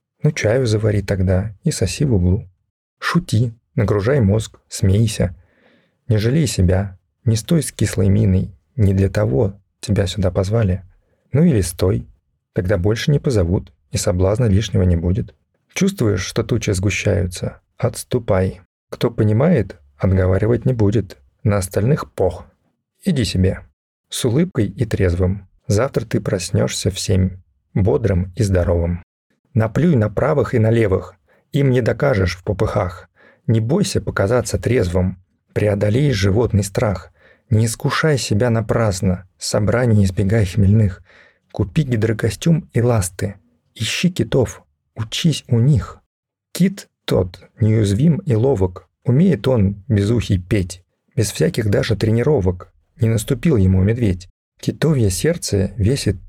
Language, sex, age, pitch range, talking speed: Russian, male, 40-59, 95-120 Hz, 125 wpm